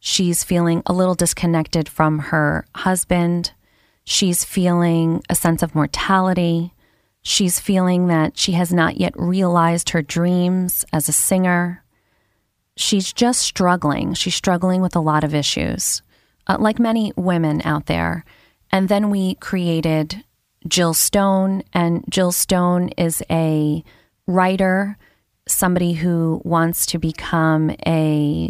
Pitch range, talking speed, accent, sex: 160-185 Hz, 130 wpm, American, female